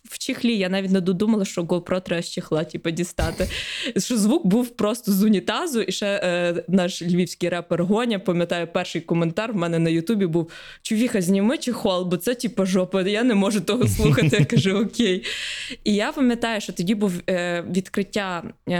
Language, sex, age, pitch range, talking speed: Ukrainian, female, 20-39, 185-225 Hz, 180 wpm